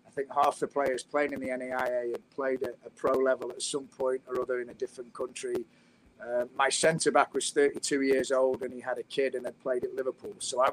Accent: British